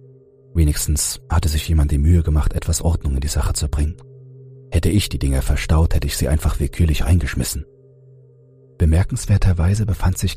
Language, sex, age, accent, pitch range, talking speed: German, male, 40-59, German, 75-105 Hz, 160 wpm